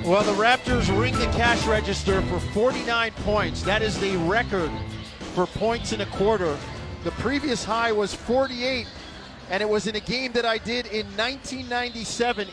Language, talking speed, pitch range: English, 170 wpm, 170-220 Hz